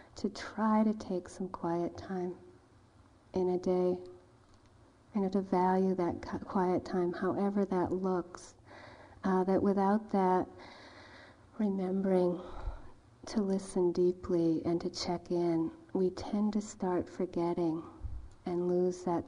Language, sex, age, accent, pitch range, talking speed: English, female, 40-59, American, 165-200 Hz, 120 wpm